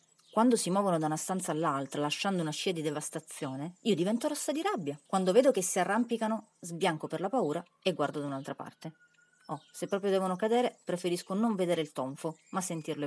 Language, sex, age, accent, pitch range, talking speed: Italian, female, 30-49, native, 165-235 Hz, 195 wpm